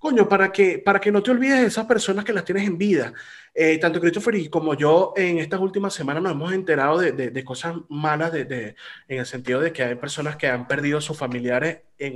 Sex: male